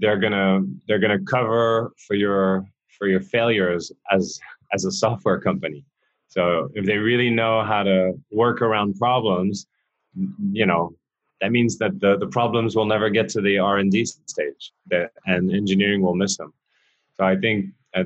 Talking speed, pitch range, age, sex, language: 170 wpm, 95-110 Hz, 30-49, male, English